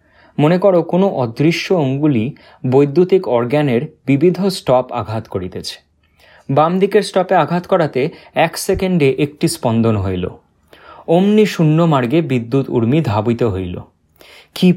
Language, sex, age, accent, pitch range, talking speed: Bengali, male, 30-49, native, 120-175 Hz, 120 wpm